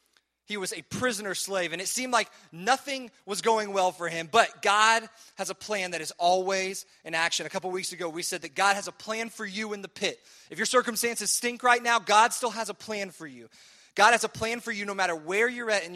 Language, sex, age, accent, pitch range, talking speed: English, male, 20-39, American, 175-225 Hz, 250 wpm